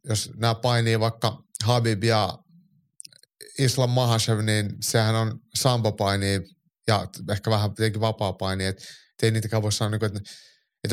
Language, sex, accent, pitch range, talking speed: Finnish, male, native, 100-120 Hz, 115 wpm